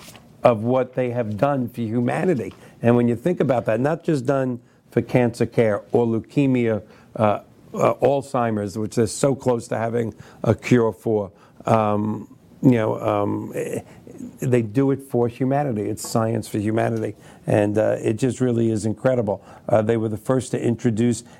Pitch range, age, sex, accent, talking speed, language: 110-125 Hz, 50-69, male, American, 170 wpm, English